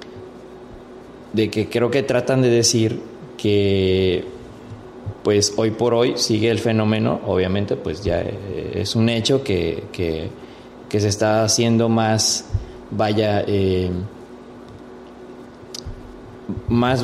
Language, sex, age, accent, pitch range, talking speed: Spanish, male, 20-39, Mexican, 105-120 Hz, 105 wpm